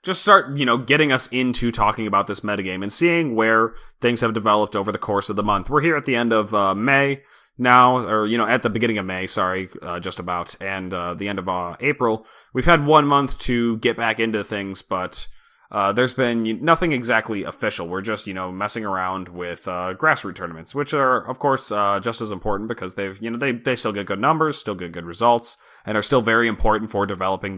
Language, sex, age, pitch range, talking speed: English, male, 20-39, 100-125 Hz, 230 wpm